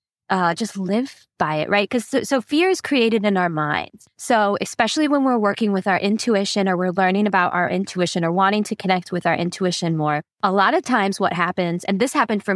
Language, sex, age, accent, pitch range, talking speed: English, female, 20-39, American, 190-255 Hz, 225 wpm